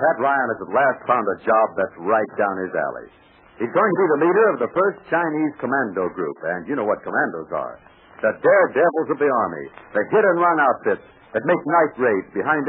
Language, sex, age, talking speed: English, male, 60-79, 210 wpm